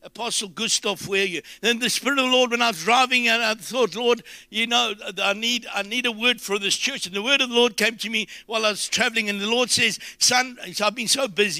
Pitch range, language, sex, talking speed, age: 170-210 Hz, English, male, 275 wpm, 60-79